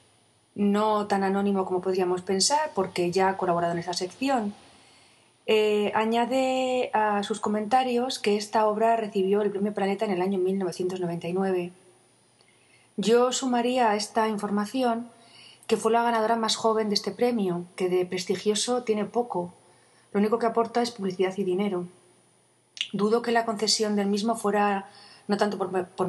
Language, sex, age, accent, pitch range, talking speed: Spanish, female, 30-49, Spanish, 185-225 Hz, 155 wpm